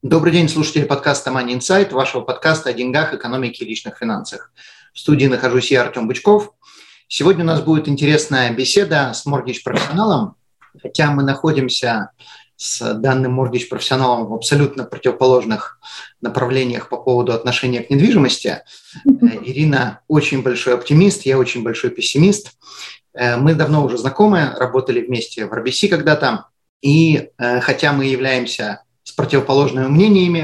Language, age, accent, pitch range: Russian, 30-49, native, 125-155 Hz